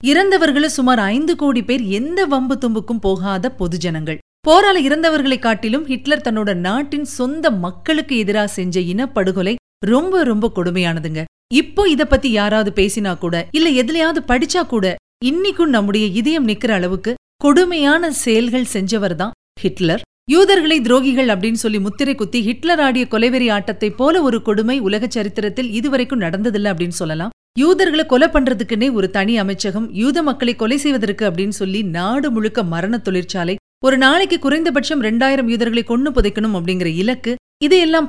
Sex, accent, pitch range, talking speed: female, native, 215-295 Hz, 140 wpm